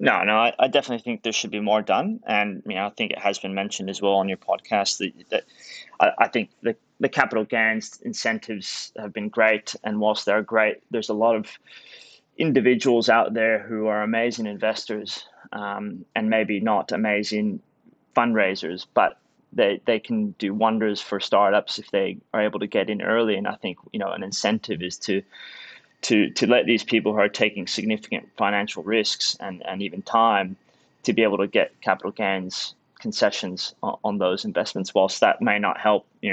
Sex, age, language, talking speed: male, 20-39, English, 195 wpm